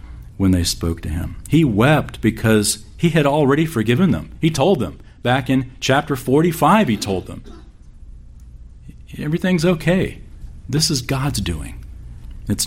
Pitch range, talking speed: 80-115 Hz, 140 wpm